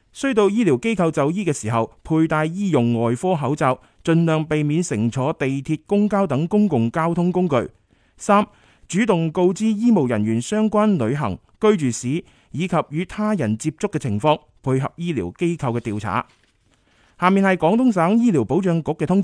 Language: Chinese